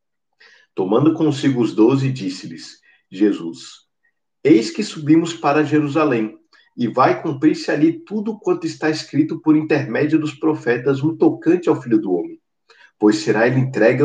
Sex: male